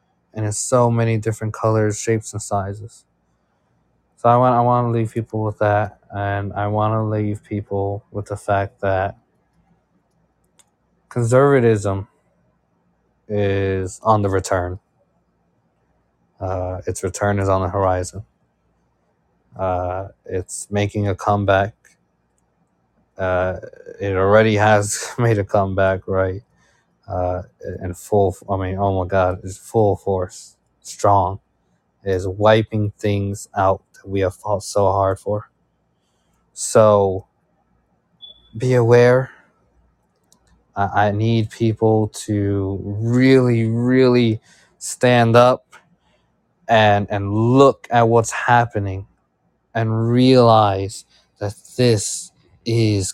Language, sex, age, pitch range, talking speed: English, male, 20-39, 95-110 Hz, 115 wpm